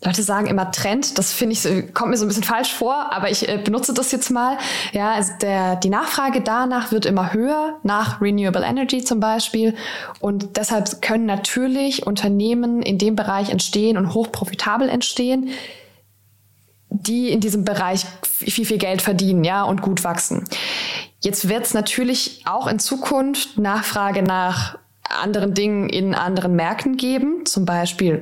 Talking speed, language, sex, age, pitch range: 160 wpm, German, female, 20-39, 195-245 Hz